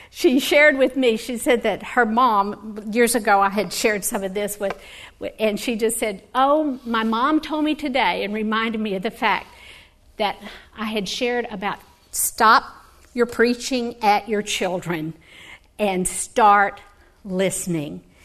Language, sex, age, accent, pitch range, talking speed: English, female, 50-69, American, 205-260 Hz, 160 wpm